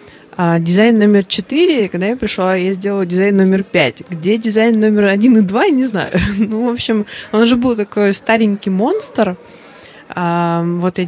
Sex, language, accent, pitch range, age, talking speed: female, Russian, native, 170-210 Hz, 20-39, 170 wpm